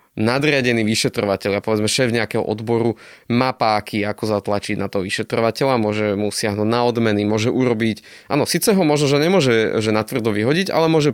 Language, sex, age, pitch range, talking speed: Slovak, male, 20-39, 105-130 Hz, 180 wpm